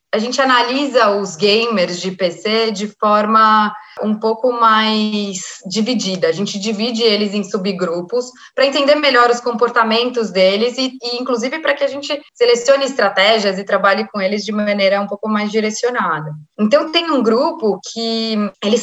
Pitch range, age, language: 205-250 Hz, 20-39, Portuguese